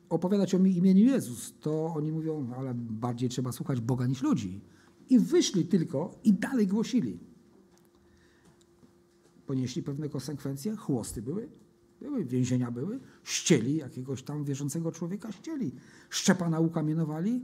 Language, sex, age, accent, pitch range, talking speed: Polish, male, 50-69, native, 135-190 Hz, 125 wpm